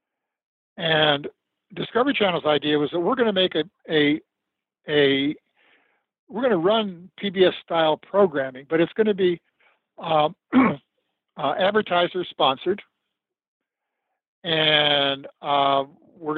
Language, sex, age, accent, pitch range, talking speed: English, male, 60-79, American, 150-190 Hz, 110 wpm